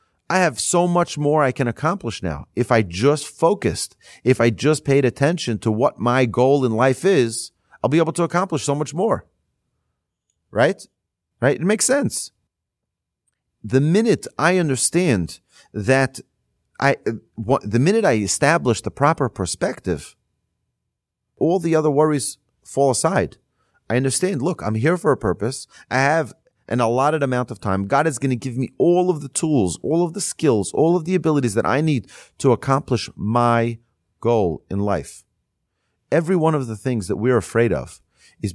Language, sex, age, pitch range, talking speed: English, male, 40-59, 110-145 Hz, 170 wpm